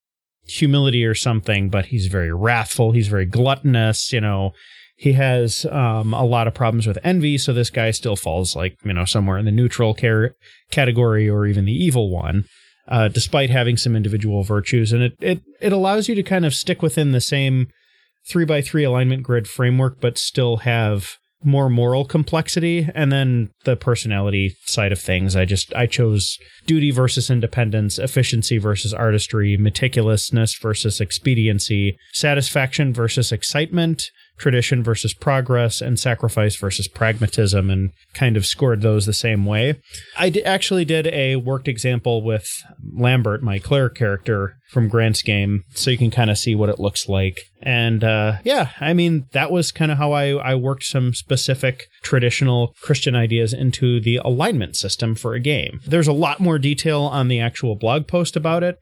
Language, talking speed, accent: English, 175 wpm, American